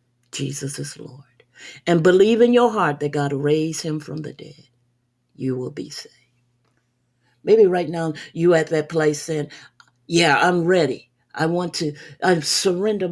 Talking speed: 160 wpm